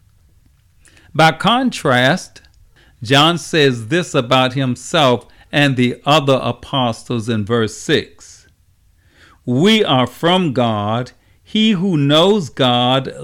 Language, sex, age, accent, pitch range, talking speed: English, male, 50-69, American, 110-150 Hz, 100 wpm